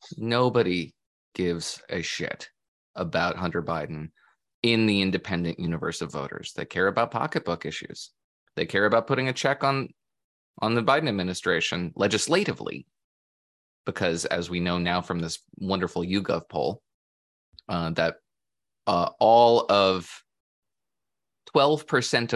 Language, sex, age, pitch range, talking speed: English, male, 20-39, 85-125 Hz, 125 wpm